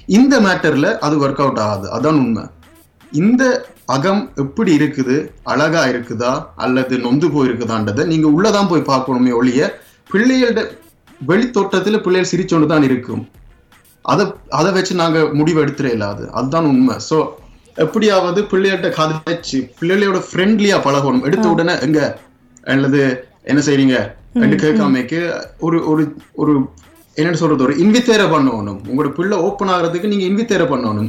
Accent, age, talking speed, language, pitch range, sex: native, 30-49, 85 wpm, Tamil, 130-185 Hz, male